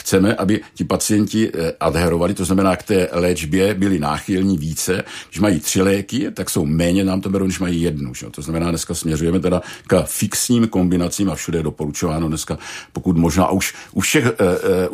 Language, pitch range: Czech, 80-100 Hz